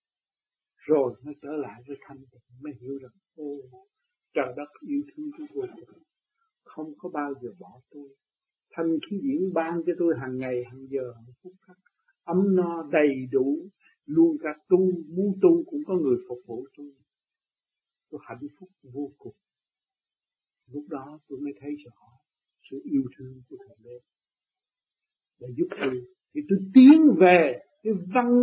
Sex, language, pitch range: male, Vietnamese, 150-235 Hz